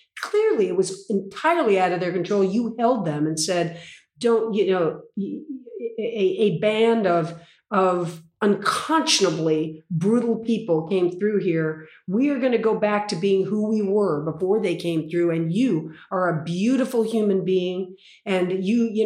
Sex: female